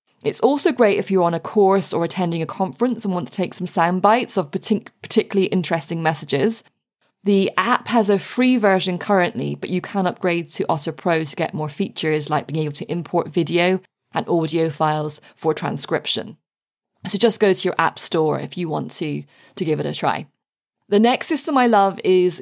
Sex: female